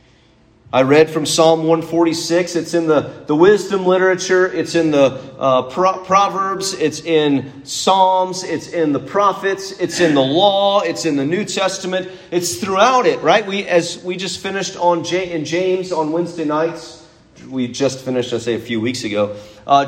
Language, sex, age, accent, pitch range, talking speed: English, male, 40-59, American, 165-205 Hz, 180 wpm